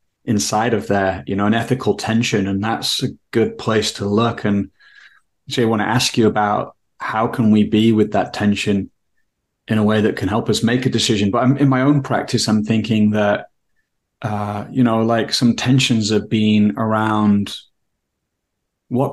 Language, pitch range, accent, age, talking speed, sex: English, 105-120 Hz, British, 30-49, 190 wpm, male